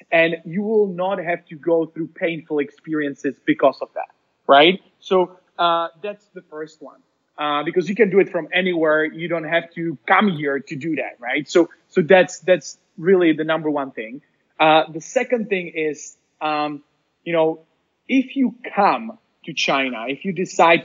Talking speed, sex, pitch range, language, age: 180 wpm, male, 155-195 Hz, English, 20-39